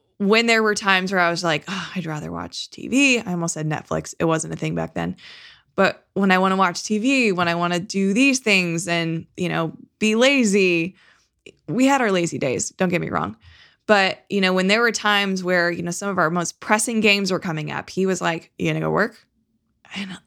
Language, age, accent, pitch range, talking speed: English, 20-39, American, 170-210 Hz, 230 wpm